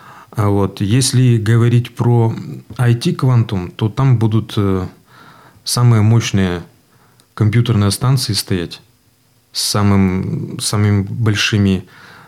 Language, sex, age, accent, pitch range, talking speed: Russian, male, 30-49, native, 100-120 Hz, 85 wpm